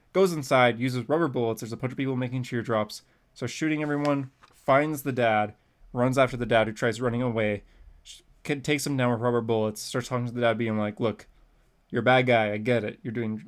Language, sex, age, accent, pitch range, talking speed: English, male, 20-39, American, 115-130 Hz, 225 wpm